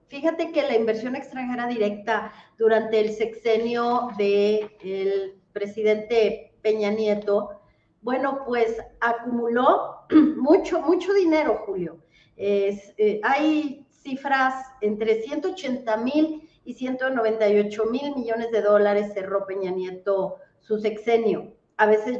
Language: Spanish